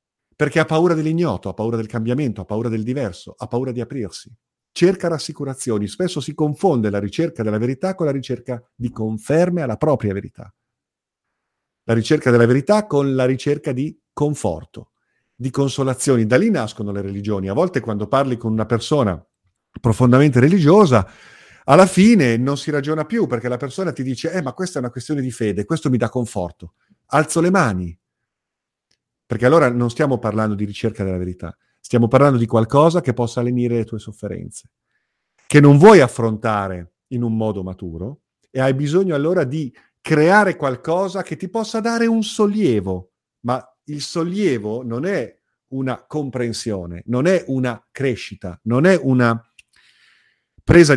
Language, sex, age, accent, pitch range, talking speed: Italian, male, 50-69, native, 110-155 Hz, 165 wpm